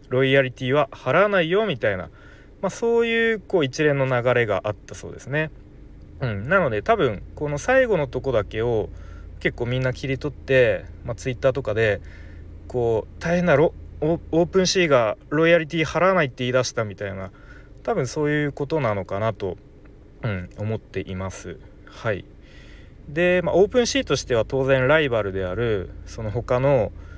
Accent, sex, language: native, male, Japanese